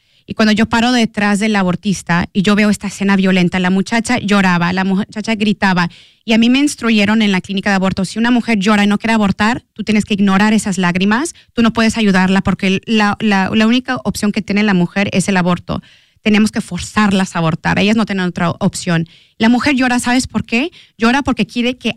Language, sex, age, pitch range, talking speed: Spanish, female, 30-49, 185-225 Hz, 215 wpm